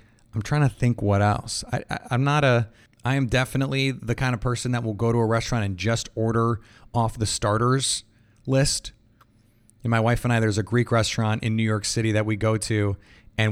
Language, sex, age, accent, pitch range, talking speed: English, male, 30-49, American, 105-125 Hz, 220 wpm